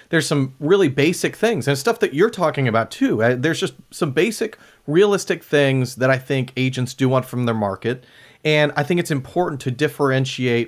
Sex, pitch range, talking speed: male, 120-150 Hz, 190 wpm